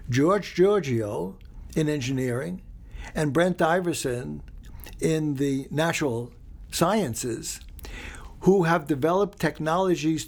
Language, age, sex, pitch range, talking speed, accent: English, 60-79, male, 125-170 Hz, 90 wpm, American